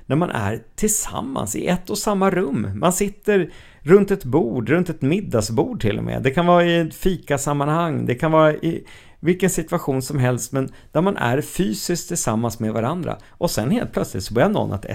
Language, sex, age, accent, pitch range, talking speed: Swedish, male, 50-69, native, 110-160 Hz, 195 wpm